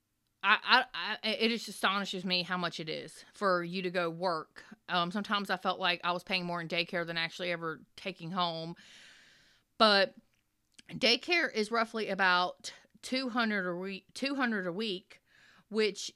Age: 30-49